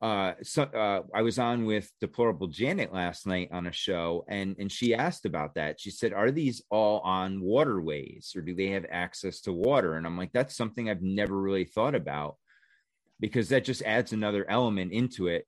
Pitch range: 90-115 Hz